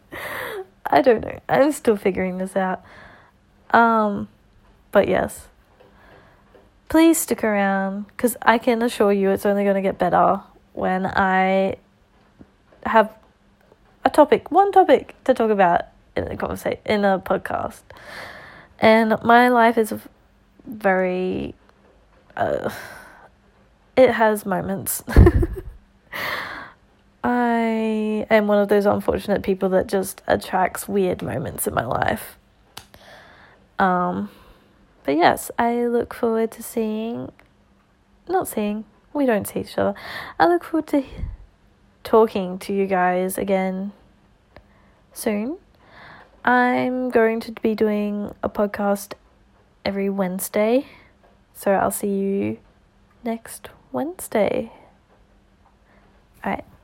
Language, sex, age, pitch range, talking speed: English, female, 20-39, 190-235 Hz, 110 wpm